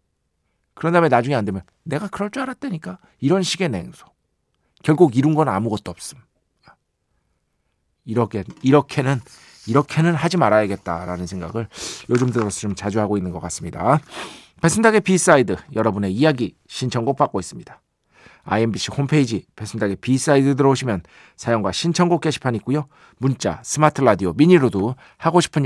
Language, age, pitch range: Korean, 40-59, 100-155 Hz